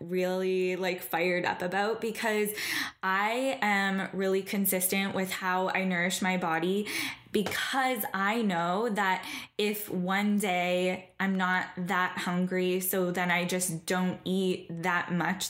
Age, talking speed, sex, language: 10-29, 135 wpm, female, English